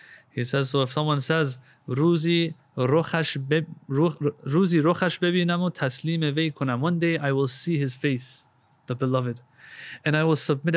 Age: 30-49